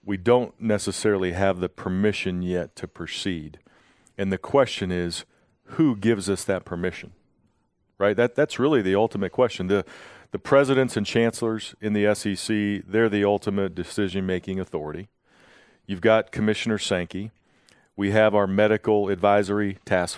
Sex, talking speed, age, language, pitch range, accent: male, 145 wpm, 40-59, English, 95-110 Hz, American